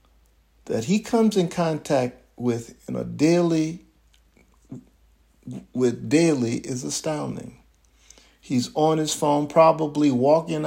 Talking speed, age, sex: 105 wpm, 50-69, male